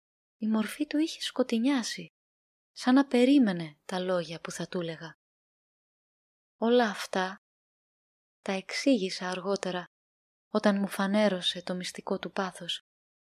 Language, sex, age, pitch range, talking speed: Greek, female, 20-39, 190-240 Hz, 120 wpm